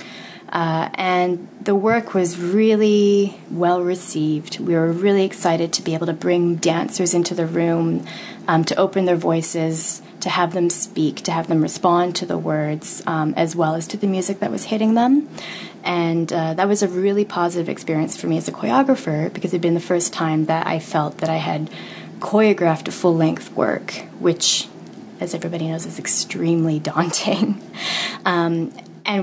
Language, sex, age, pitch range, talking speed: English, female, 20-39, 165-190 Hz, 175 wpm